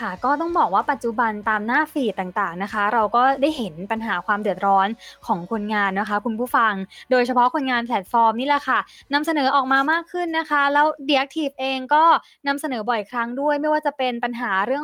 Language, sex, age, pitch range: Thai, female, 20-39, 225-295 Hz